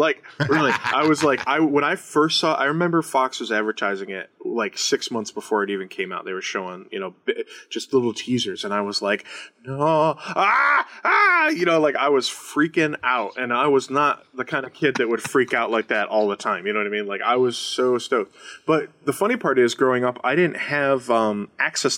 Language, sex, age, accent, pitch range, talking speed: English, male, 20-39, American, 110-145 Hz, 240 wpm